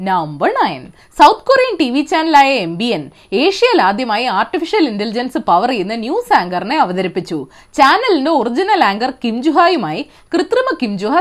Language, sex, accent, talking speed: Malayalam, female, native, 105 wpm